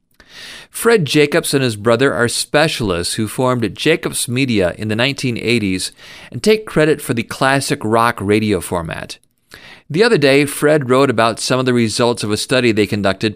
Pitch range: 110-140 Hz